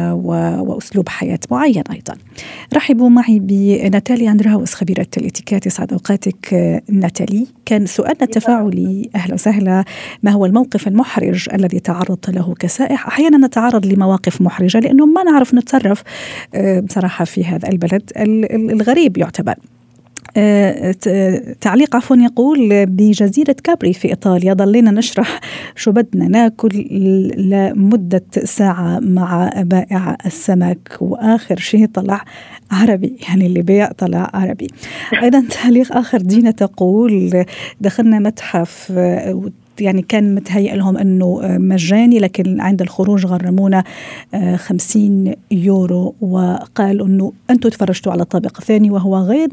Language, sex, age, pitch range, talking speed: Arabic, female, 40-59, 185-225 Hz, 115 wpm